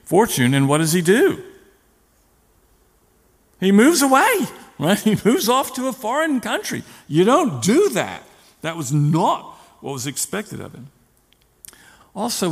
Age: 50-69